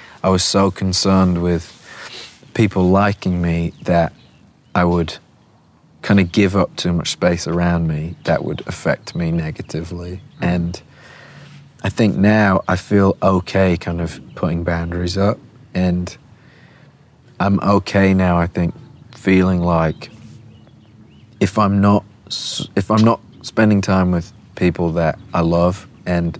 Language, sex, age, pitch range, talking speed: English, male, 30-49, 85-100 Hz, 135 wpm